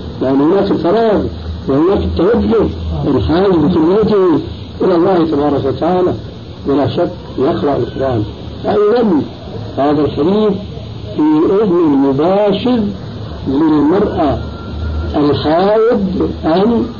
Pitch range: 135-210 Hz